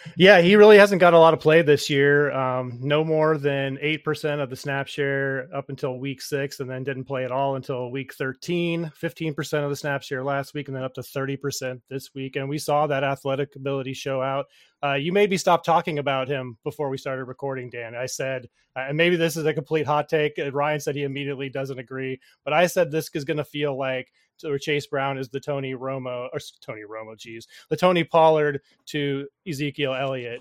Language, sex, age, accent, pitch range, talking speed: English, male, 30-49, American, 130-155 Hz, 220 wpm